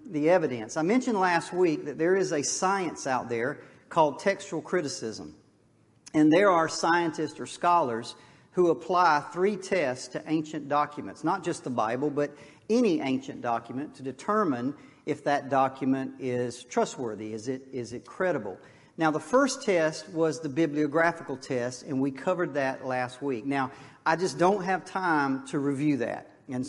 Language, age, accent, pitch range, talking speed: English, 50-69, American, 130-165 Hz, 165 wpm